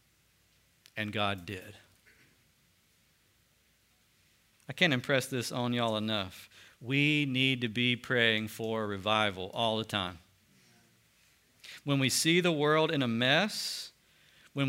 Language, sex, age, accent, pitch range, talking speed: English, male, 50-69, American, 115-150 Hz, 120 wpm